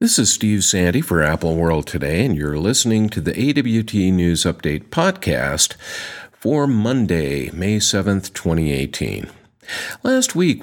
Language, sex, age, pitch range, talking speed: English, male, 50-69, 80-110 Hz, 135 wpm